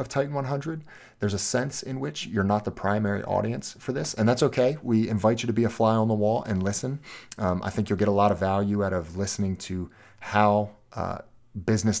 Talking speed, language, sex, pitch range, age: 225 wpm, English, male, 95-115 Hz, 30-49